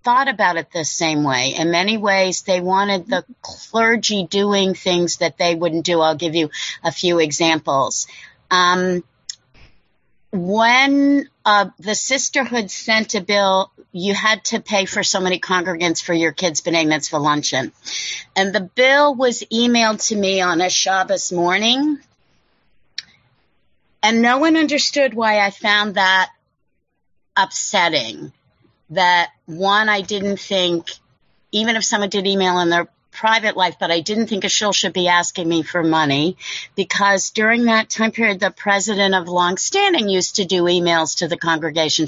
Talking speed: 155 wpm